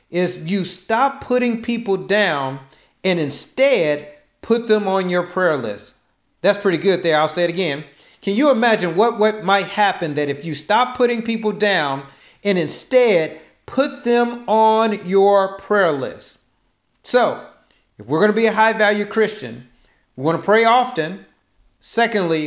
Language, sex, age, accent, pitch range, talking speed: English, male, 40-59, American, 170-225 Hz, 160 wpm